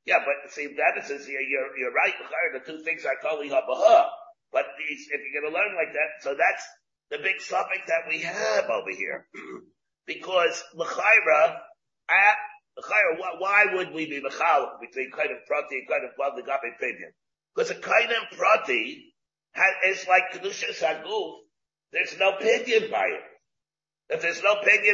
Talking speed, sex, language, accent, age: 175 wpm, male, English, American, 50-69